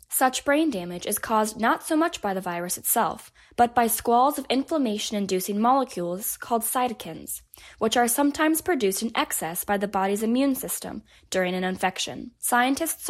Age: 10-29